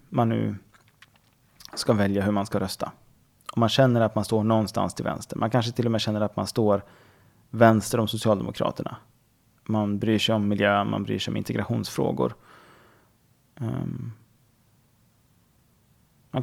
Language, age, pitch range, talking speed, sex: Swedish, 20-39, 105-120 Hz, 145 wpm, male